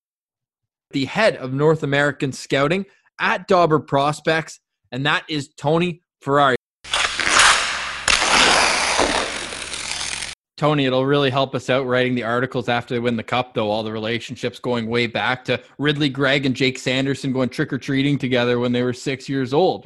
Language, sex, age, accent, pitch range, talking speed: English, male, 20-39, American, 120-145 Hz, 150 wpm